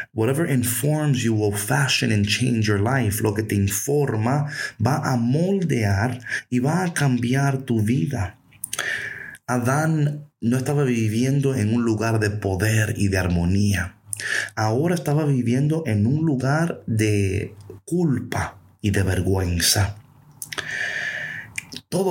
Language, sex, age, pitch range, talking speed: Spanish, male, 30-49, 105-145 Hz, 125 wpm